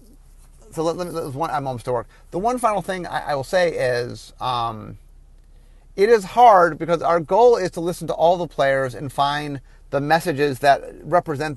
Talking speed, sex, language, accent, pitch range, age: 195 wpm, male, English, American, 130-185 Hz, 30-49